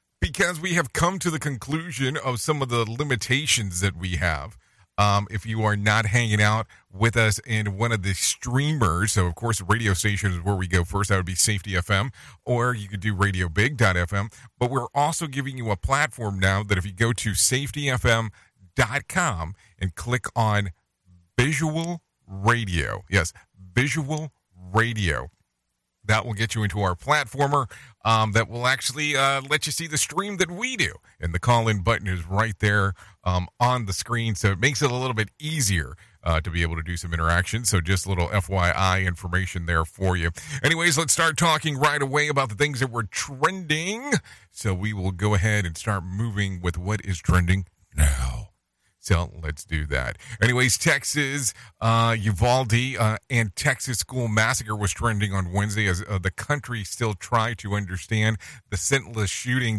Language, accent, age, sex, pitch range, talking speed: English, American, 40-59, male, 95-130 Hz, 180 wpm